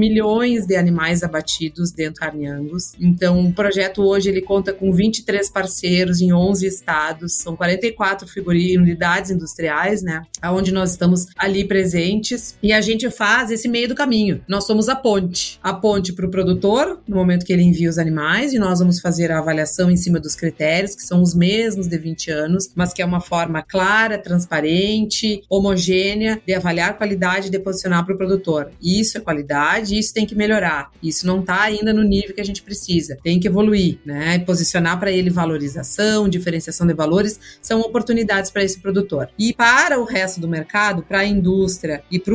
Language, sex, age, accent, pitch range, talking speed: Portuguese, female, 30-49, Brazilian, 175-210 Hz, 185 wpm